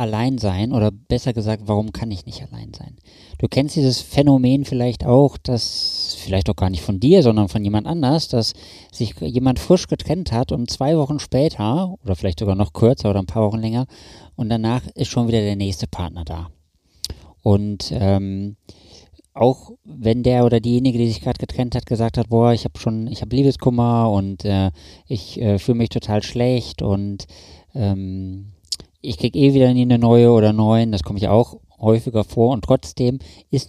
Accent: German